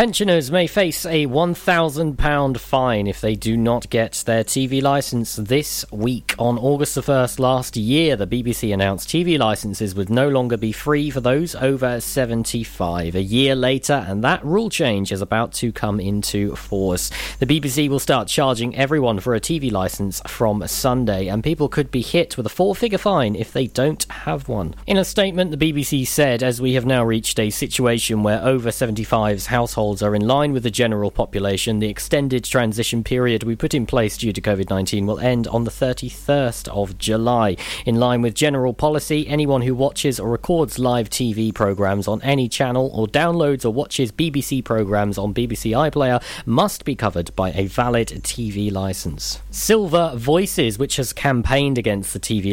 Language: English